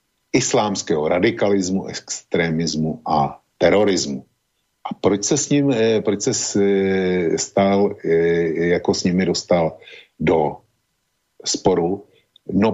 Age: 50-69